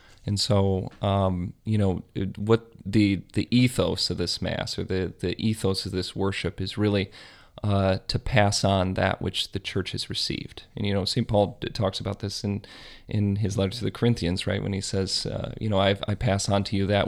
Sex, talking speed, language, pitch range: male, 210 wpm, English, 95-110 Hz